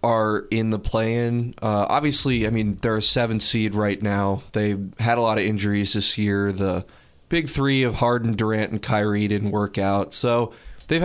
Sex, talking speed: male, 195 wpm